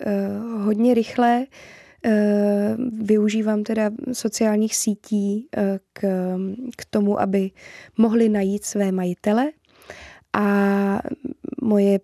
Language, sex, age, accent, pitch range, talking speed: Czech, female, 20-39, native, 195-215 Hz, 75 wpm